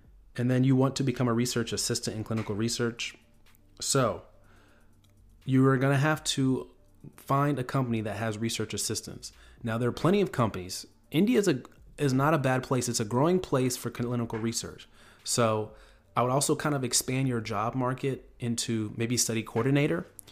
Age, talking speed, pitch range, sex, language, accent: 30-49, 175 wpm, 110-130 Hz, male, English, American